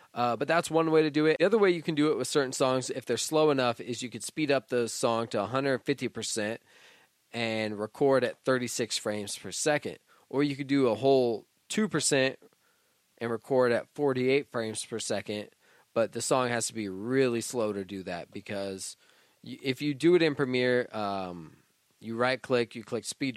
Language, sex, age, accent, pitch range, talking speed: English, male, 20-39, American, 110-140 Hz, 195 wpm